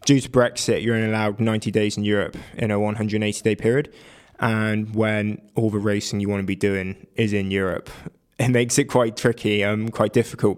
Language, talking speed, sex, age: English, 205 wpm, male, 20-39